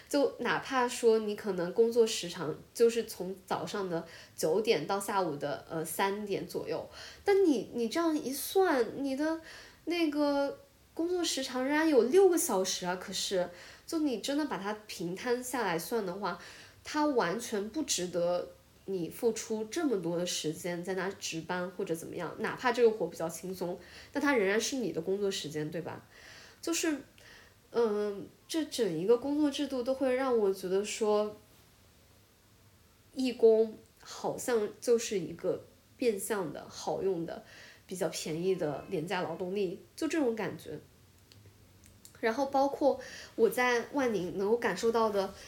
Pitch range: 175-250 Hz